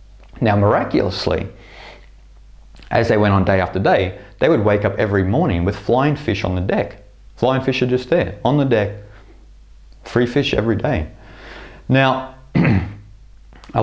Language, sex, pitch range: English, male, 95-125 Hz